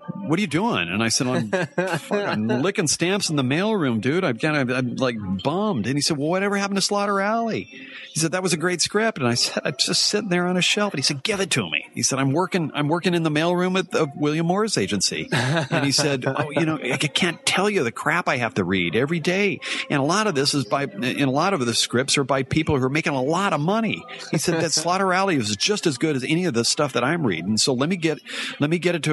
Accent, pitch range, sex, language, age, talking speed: American, 125-180 Hz, male, English, 40-59, 285 wpm